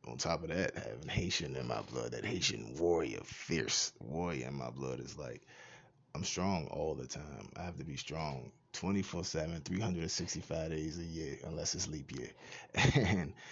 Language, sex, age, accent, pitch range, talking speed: English, male, 20-39, American, 85-95 Hz, 180 wpm